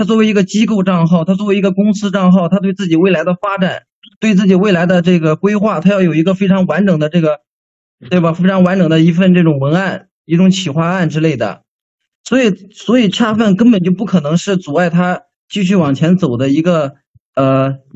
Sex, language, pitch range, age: male, Chinese, 160-195 Hz, 20-39